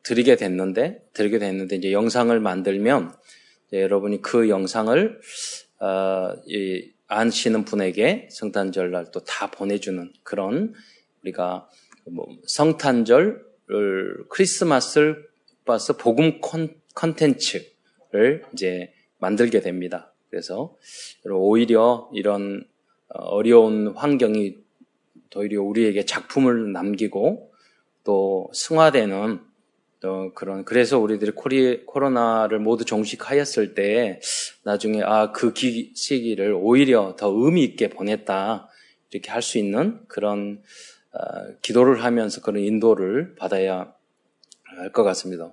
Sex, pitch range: male, 100-130 Hz